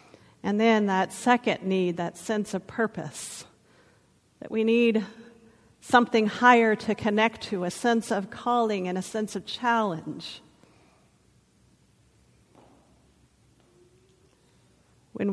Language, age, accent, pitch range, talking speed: English, 50-69, American, 180-215 Hz, 105 wpm